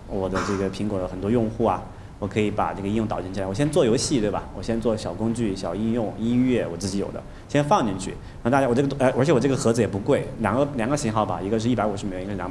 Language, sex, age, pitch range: Chinese, male, 30-49, 100-120 Hz